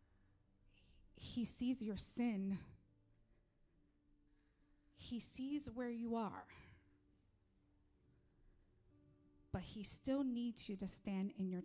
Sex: female